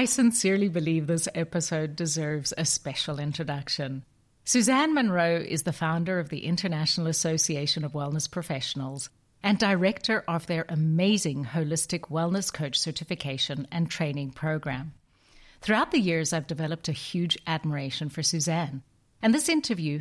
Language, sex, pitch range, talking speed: English, female, 150-190 Hz, 140 wpm